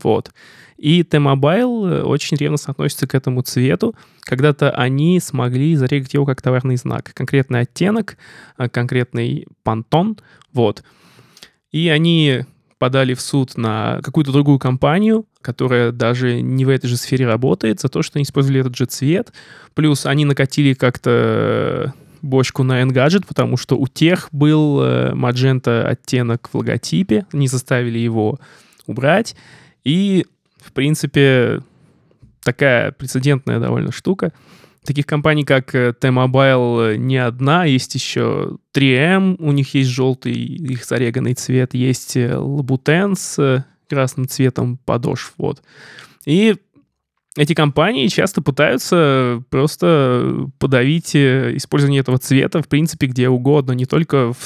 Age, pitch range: 20-39, 125-150 Hz